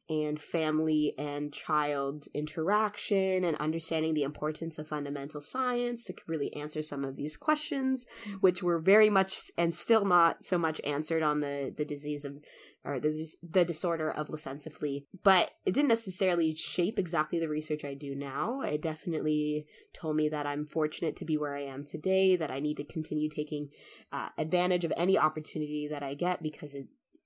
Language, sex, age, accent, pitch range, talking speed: English, female, 20-39, American, 150-175 Hz, 175 wpm